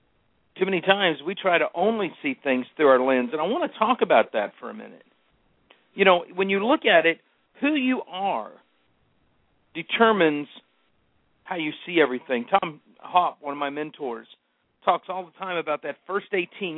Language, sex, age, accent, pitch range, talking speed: English, male, 50-69, American, 145-195 Hz, 180 wpm